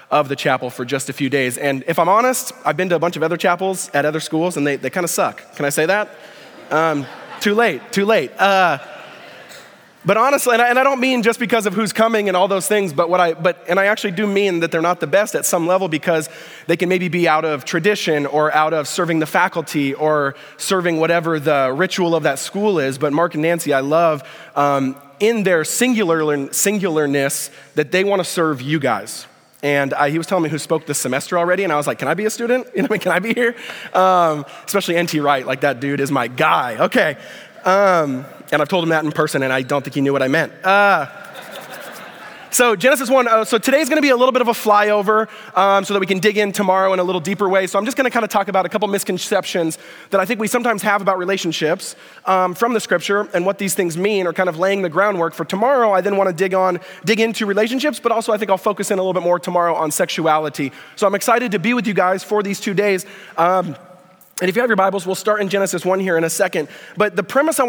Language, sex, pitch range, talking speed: English, male, 160-210 Hz, 255 wpm